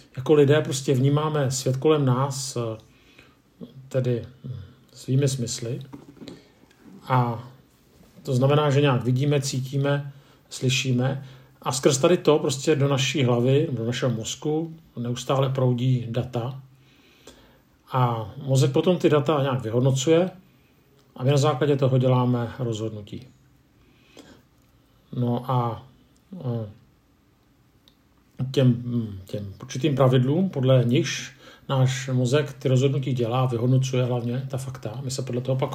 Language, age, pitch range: Czech, 50-69, 125-140 Hz